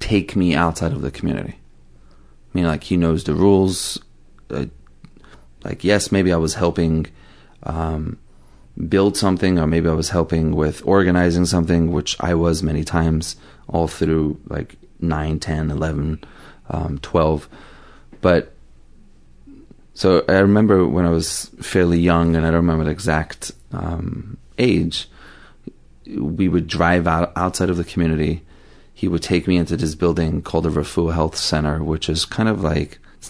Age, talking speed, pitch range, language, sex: 30-49, 155 wpm, 75-90 Hz, English, male